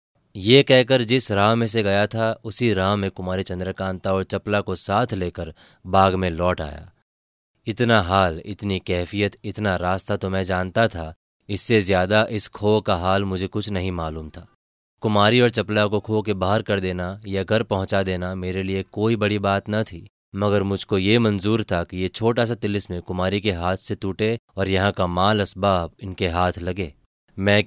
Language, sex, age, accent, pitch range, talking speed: Hindi, male, 20-39, native, 95-105 Hz, 190 wpm